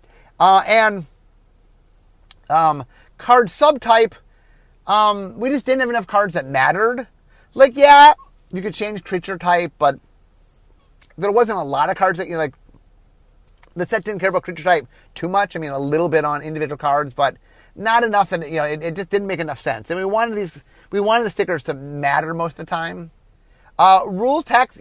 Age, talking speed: 30-49, 190 wpm